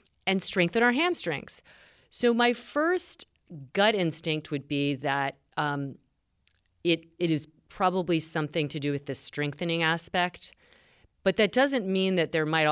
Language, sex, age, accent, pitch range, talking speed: English, female, 40-59, American, 140-170 Hz, 145 wpm